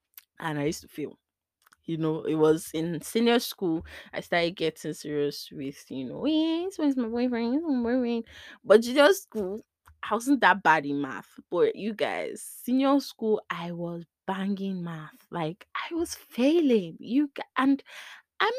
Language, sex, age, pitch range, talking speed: English, female, 20-39, 155-250 Hz, 160 wpm